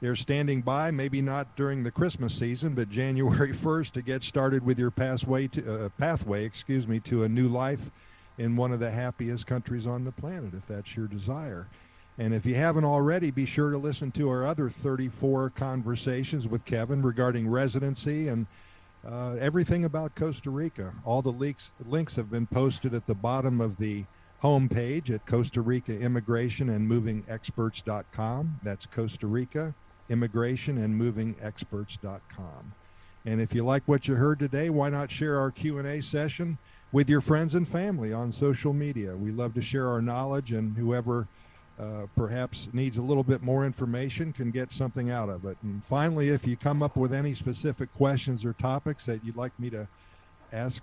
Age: 50-69